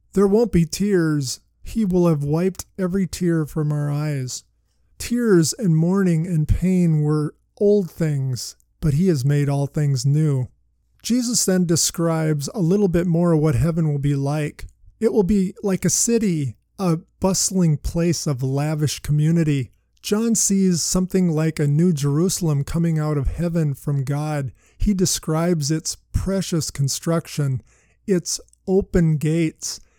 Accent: American